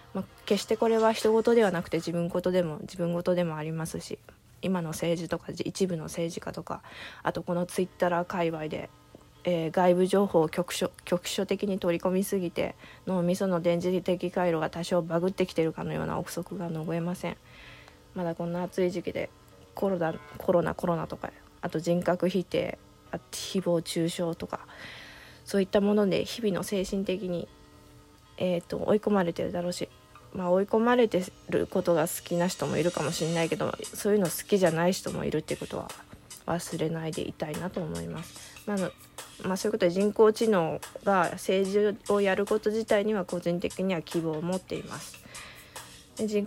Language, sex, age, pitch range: Japanese, female, 20-39, 170-195 Hz